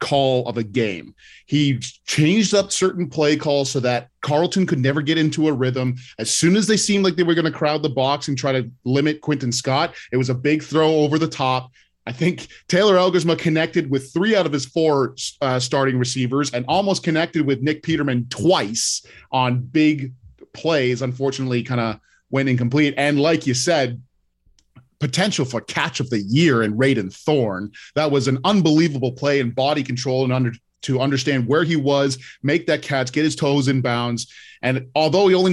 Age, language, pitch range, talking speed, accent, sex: 30-49, English, 125-155 Hz, 195 wpm, American, male